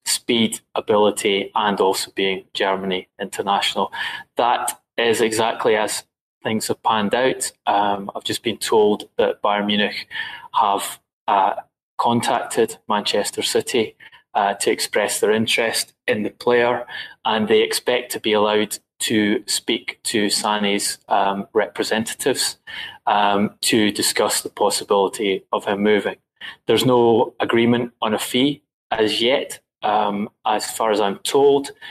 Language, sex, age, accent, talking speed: English, male, 20-39, British, 130 wpm